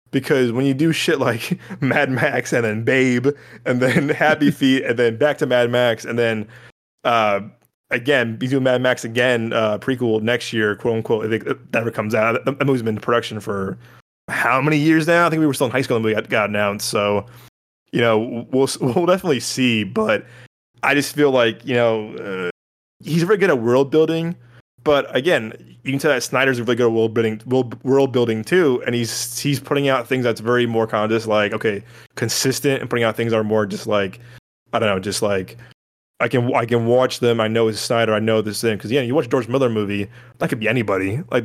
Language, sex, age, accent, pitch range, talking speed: English, male, 20-39, American, 110-135 Hz, 225 wpm